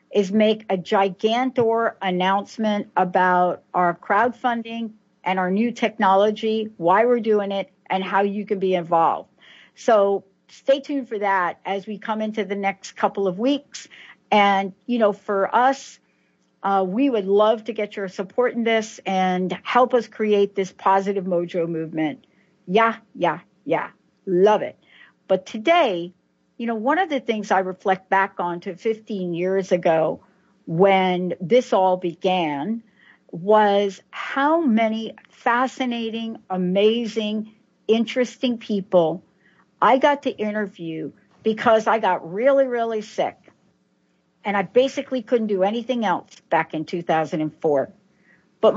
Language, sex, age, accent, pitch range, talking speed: English, female, 60-79, American, 185-230 Hz, 140 wpm